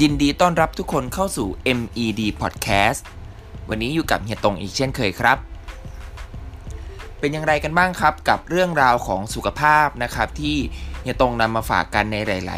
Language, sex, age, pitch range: Thai, male, 20-39, 100-140 Hz